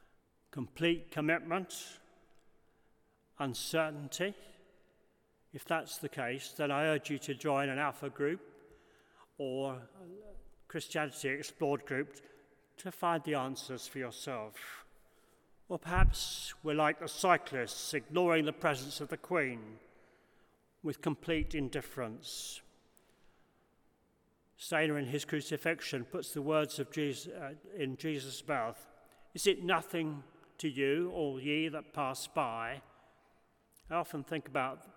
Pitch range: 130-155 Hz